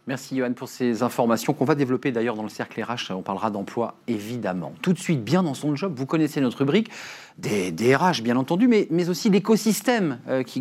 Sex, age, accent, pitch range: male, 40-59, French, 120-170 Hz